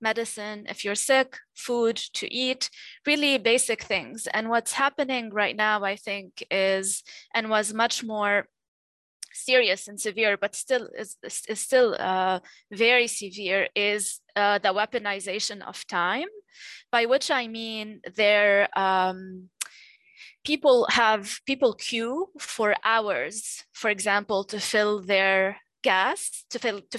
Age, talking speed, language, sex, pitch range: 20-39, 130 wpm, English, female, 200-230 Hz